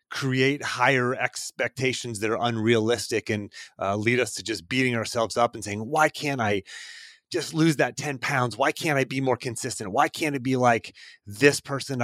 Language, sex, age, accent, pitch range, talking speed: English, male, 30-49, American, 100-130 Hz, 190 wpm